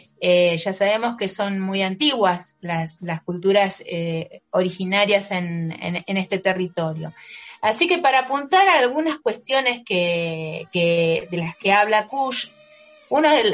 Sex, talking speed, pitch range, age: female, 145 wpm, 185-270 Hz, 30-49